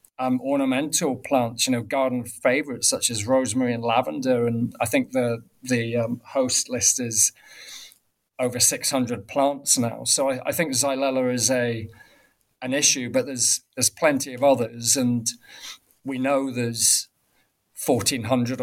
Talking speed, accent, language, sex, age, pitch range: 145 wpm, British, English, male, 40-59, 120-130 Hz